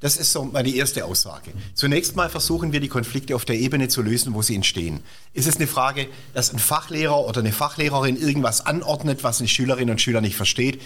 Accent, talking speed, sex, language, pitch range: German, 220 wpm, male, German, 115-155 Hz